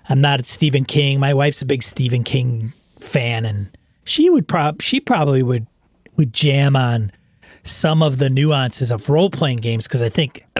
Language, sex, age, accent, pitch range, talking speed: English, male, 30-49, American, 115-145 Hz, 180 wpm